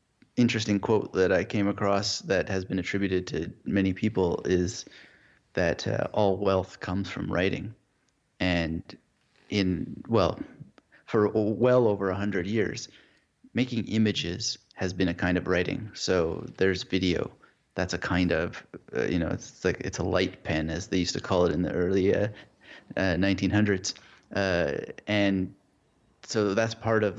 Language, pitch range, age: English, 90-105 Hz, 30-49